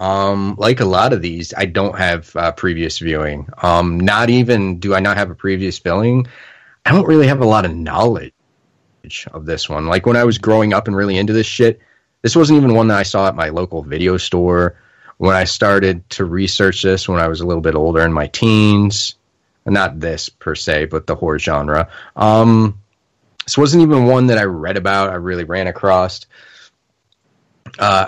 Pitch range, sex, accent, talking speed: 90-120 Hz, male, American, 200 wpm